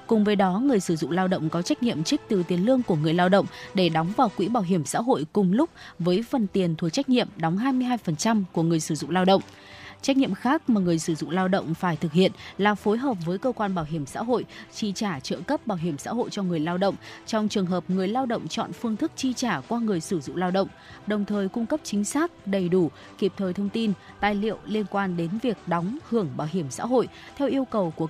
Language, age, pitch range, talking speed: Vietnamese, 20-39, 175-230 Hz, 260 wpm